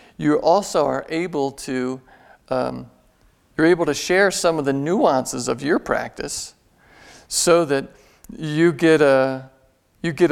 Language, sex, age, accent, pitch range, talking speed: English, male, 50-69, American, 125-150 Hz, 140 wpm